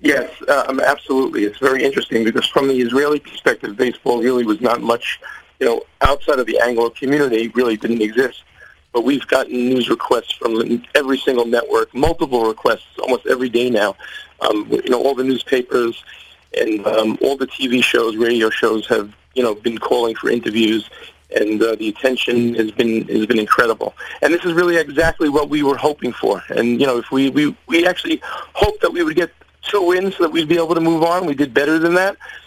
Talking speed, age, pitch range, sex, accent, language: 200 wpm, 40-59, 130-175 Hz, male, American, English